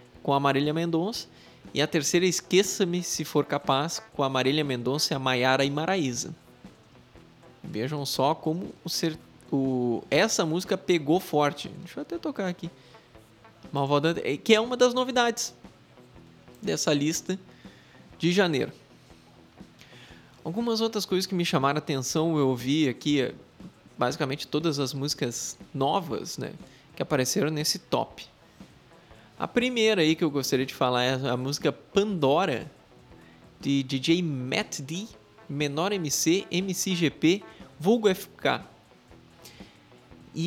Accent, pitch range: Brazilian, 135-190 Hz